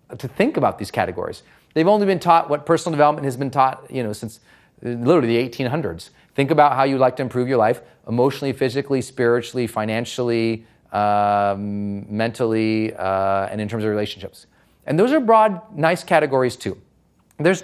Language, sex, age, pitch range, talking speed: English, male, 30-49, 120-190 Hz, 170 wpm